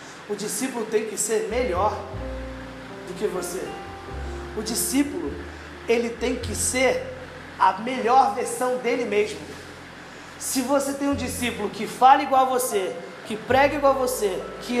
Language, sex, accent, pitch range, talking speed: Portuguese, male, Brazilian, 230-265 Hz, 145 wpm